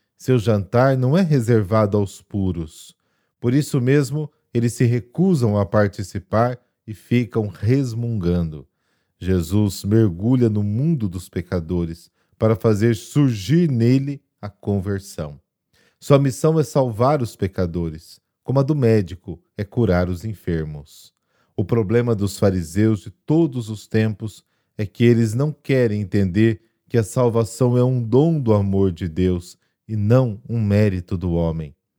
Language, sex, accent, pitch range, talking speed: Portuguese, male, Brazilian, 95-125 Hz, 140 wpm